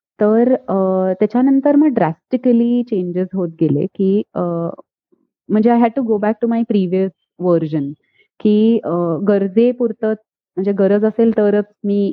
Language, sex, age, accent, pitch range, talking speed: Marathi, female, 30-49, native, 185-230 Hz, 125 wpm